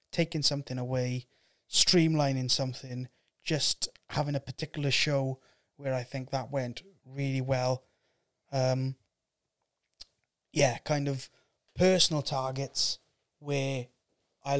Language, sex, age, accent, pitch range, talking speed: English, male, 20-39, British, 130-150 Hz, 105 wpm